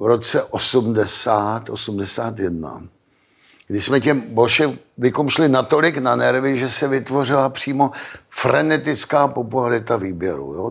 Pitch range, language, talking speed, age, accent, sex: 120-145 Hz, Czech, 105 wpm, 60-79, native, male